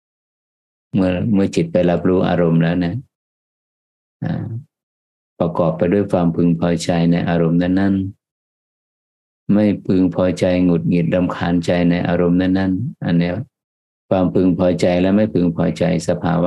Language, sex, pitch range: Thai, male, 85-100 Hz